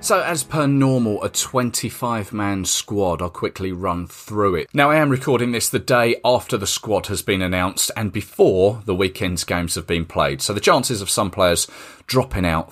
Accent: British